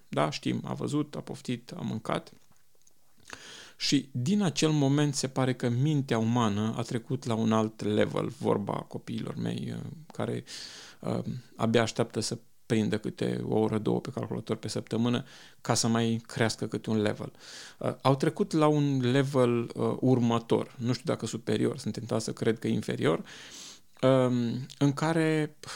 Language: Romanian